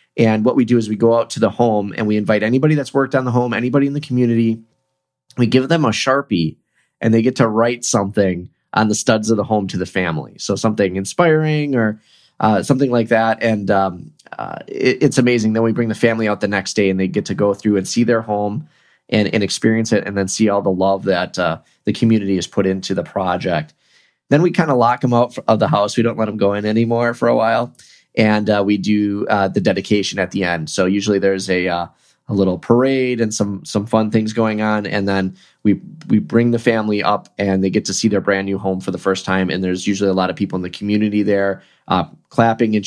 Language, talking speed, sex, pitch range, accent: English, 245 wpm, male, 100-115 Hz, American